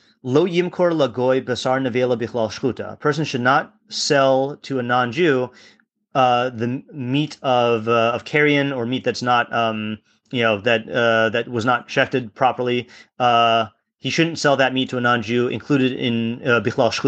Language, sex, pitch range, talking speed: English, male, 115-140 Hz, 160 wpm